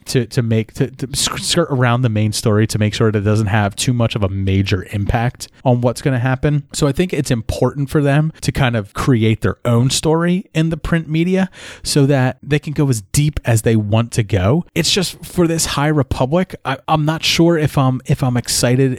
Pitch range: 110-140 Hz